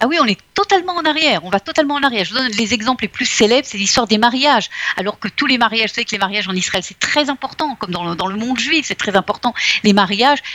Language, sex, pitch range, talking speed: Russian, female, 205-275 Hz, 280 wpm